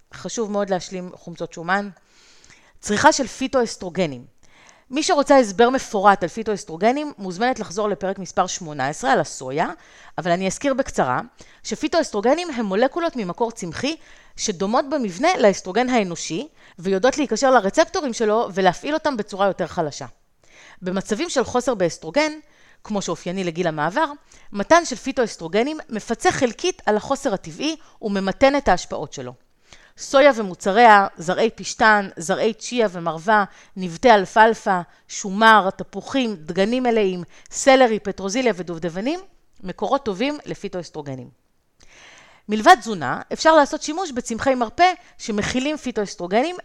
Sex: female